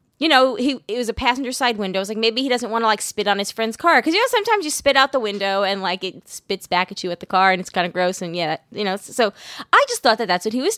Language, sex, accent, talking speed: English, female, American, 335 wpm